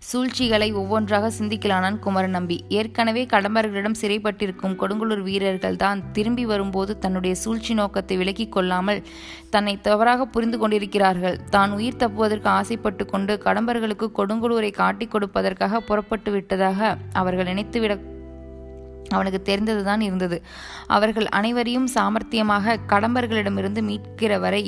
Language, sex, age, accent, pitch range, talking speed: Tamil, female, 20-39, native, 190-220 Hz, 100 wpm